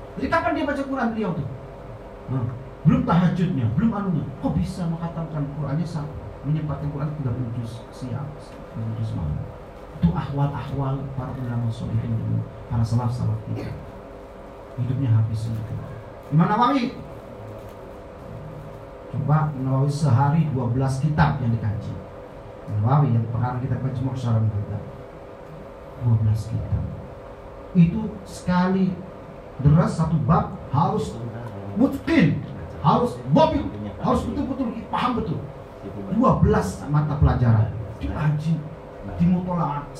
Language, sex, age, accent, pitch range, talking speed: Indonesian, male, 40-59, native, 125-170 Hz, 110 wpm